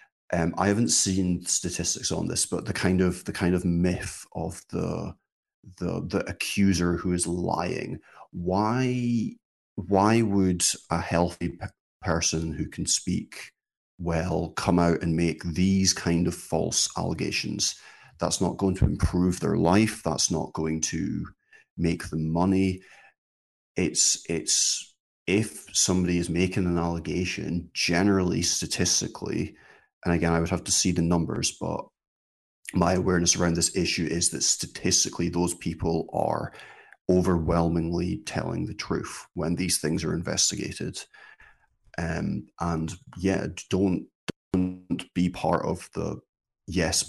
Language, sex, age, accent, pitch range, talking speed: English, male, 30-49, British, 85-95 Hz, 135 wpm